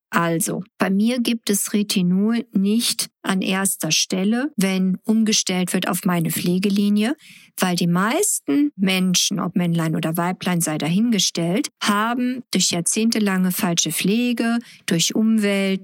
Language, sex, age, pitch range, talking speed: German, female, 50-69, 180-230 Hz, 125 wpm